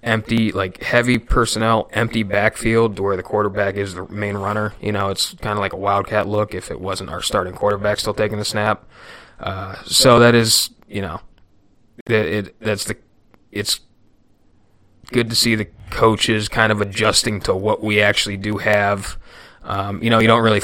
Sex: male